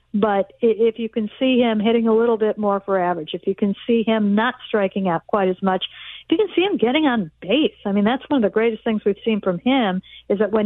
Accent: American